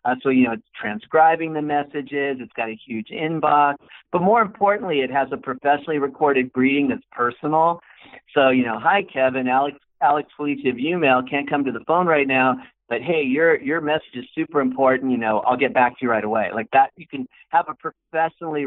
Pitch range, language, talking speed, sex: 125-155 Hz, English, 210 wpm, male